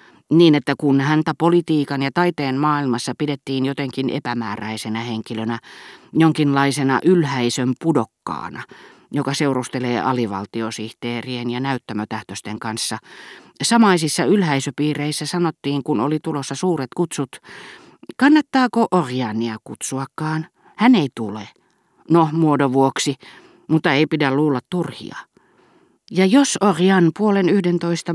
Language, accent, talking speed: Finnish, native, 100 wpm